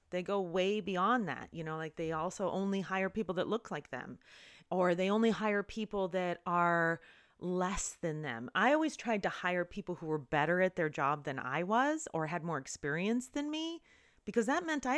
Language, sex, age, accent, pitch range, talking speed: English, female, 30-49, American, 145-200 Hz, 210 wpm